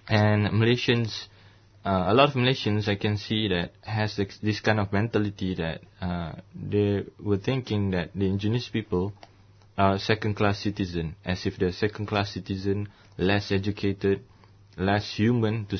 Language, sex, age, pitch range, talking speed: English, male, 20-39, 95-105 Hz, 145 wpm